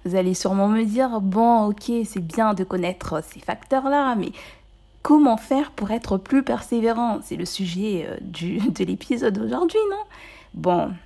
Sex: female